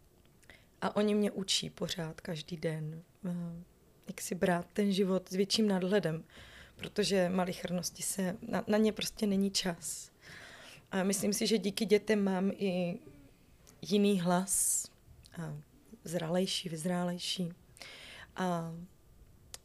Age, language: 20-39, Czech